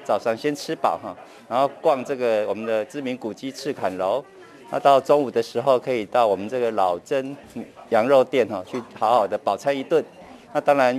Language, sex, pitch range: Chinese, male, 120-145 Hz